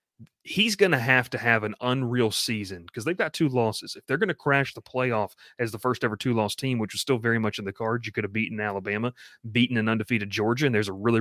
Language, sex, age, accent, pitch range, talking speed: English, male, 30-49, American, 110-130 Hz, 250 wpm